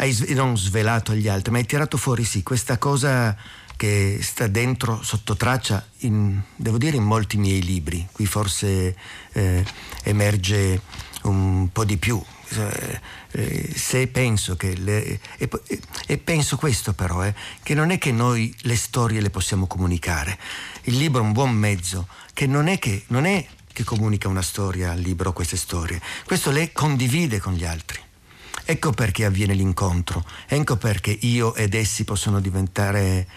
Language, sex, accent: Italian, male, native